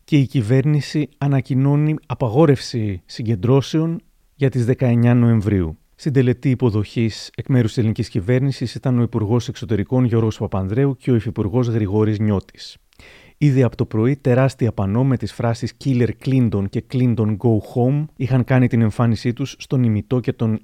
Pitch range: 110-135 Hz